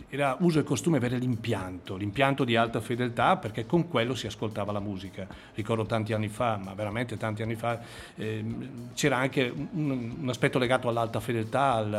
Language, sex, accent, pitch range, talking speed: Italian, male, native, 110-135 Hz, 180 wpm